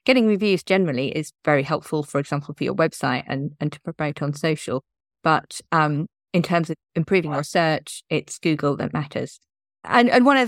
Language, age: English, 30-49